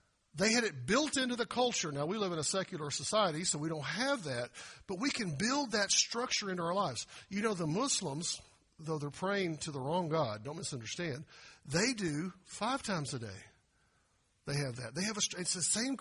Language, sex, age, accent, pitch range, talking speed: English, male, 50-69, American, 150-225 Hz, 210 wpm